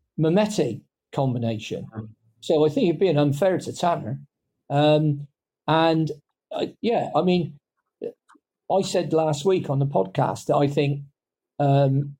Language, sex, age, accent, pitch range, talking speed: English, male, 50-69, British, 135-155 Hz, 135 wpm